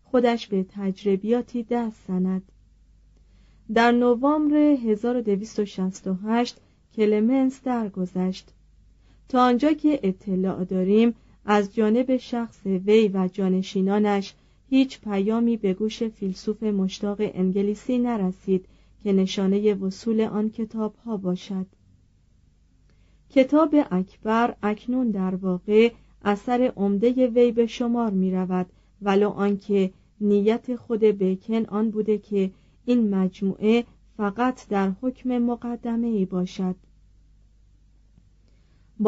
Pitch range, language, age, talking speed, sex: 190-235 Hz, Persian, 40-59, 100 wpm, female